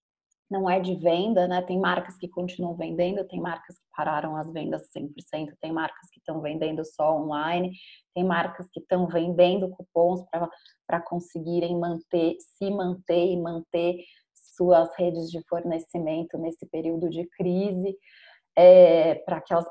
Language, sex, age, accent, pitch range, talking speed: English, female, 20-39, Brazilian, 170-195 Hz, 145 wpm